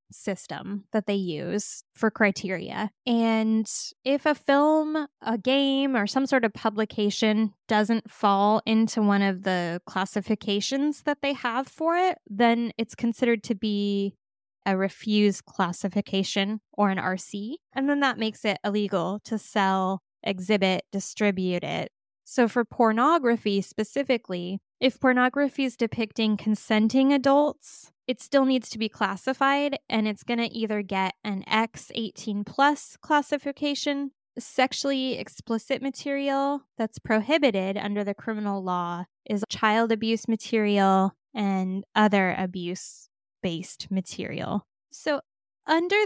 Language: English